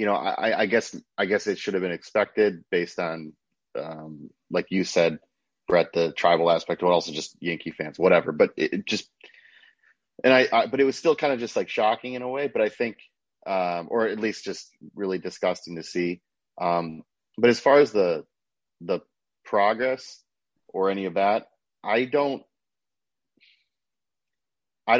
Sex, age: male, 30-49